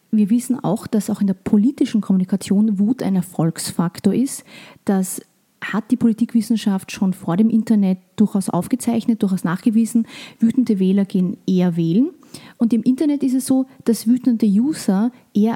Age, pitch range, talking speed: 30-49, 195-230 Hz, 155 wpm